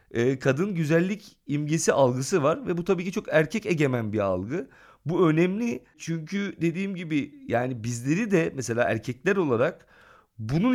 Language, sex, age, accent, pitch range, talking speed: Turkish, male, 40-59, native, 125-180 Hz, 145 wpm